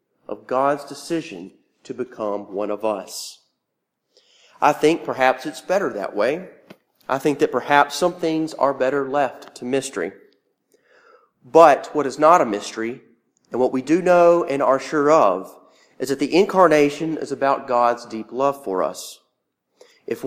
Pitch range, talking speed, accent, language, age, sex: 135-175 Hz, 155 wpm, American, English, 40-59, male